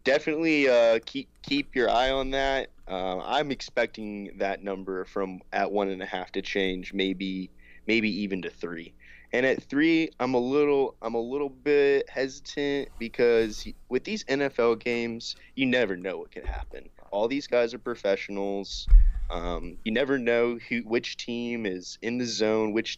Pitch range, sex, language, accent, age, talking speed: 90-120 Hz, male, English, American, 20-39, 170 wpm